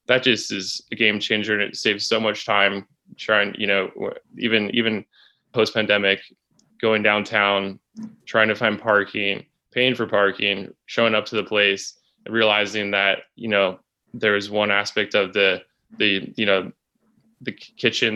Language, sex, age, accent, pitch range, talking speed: English, male, 20-39, American, 100-115 Hz, 155 wpm